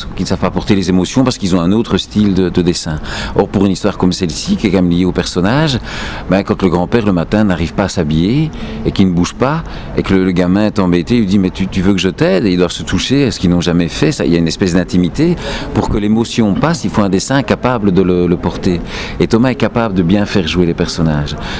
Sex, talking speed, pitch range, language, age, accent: male, 285 wpm, 90-115 Hz, French, 50-69, French